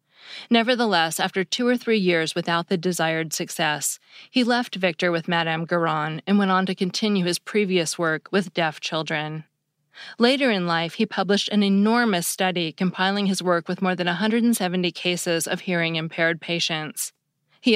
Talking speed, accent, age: 160 wpm, American, 20-39